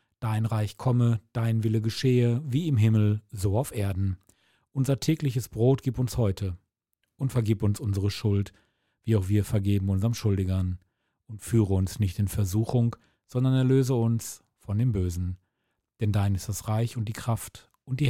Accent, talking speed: German, 170 wpm